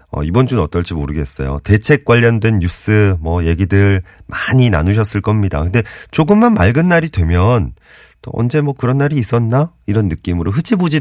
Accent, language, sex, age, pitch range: native, Korean, male, 40-59, 85-120 Hz